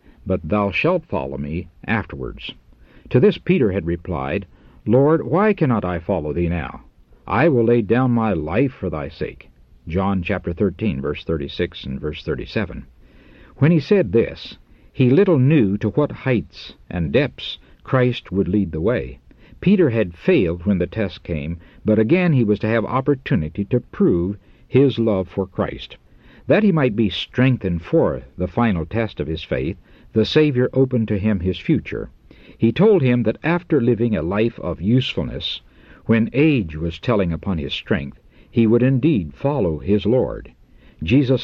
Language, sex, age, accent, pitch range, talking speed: English, male, 60-79, American, 85-125 Hz, 165 wpm